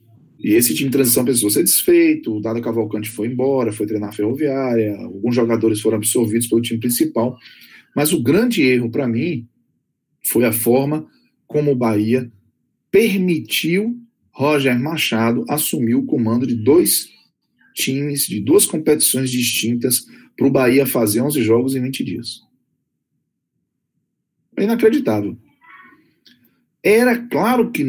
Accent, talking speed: Brazilian, 135 wpm